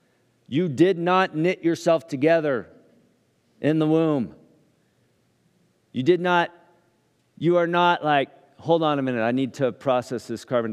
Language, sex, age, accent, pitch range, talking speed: English, male, 40-59, American, 110-155 Hz, 145 wpm